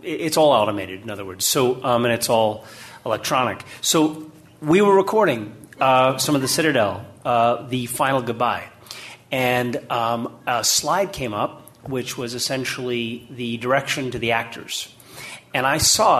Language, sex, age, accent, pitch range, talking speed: English, male, 40-59, American, 115-140 Hz, 155 wpm